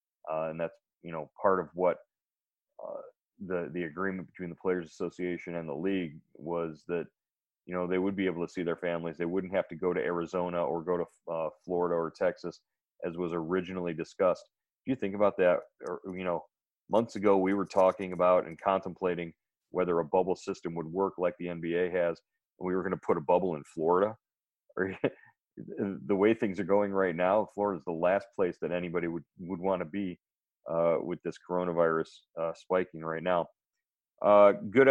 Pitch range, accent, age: 85-100 Hz, American, 30-49